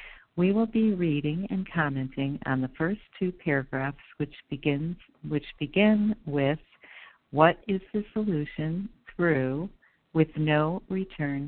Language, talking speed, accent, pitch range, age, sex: English, 125 wpm, American, 140-175 Hz, 50-69, female